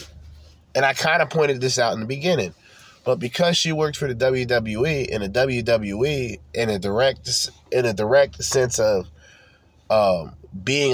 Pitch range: 85-135 Hz